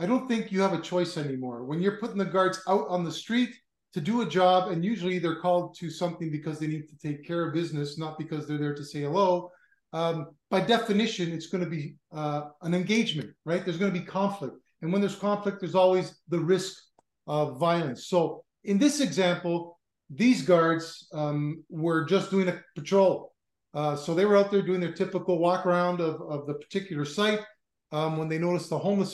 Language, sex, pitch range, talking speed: English, male, 155-185 Hz, 205 wpm